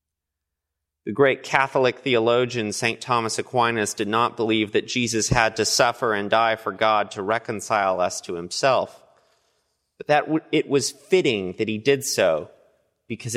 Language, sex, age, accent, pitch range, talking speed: English, male, 30-49, American, 100-130 Hz, 155 wpm